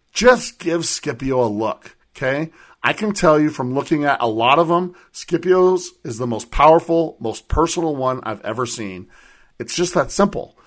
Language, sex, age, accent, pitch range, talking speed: English, male, 50-69, American, 120-165 Hz, 180 wpm